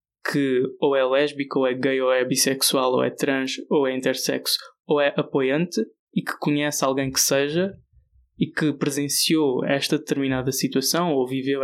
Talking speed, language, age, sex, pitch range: 170 wpm, Portuguese, 20-39, male, 135-160 Hz